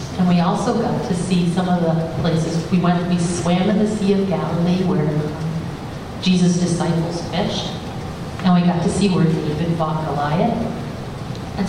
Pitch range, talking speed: 160-195 Hz, 170 wpm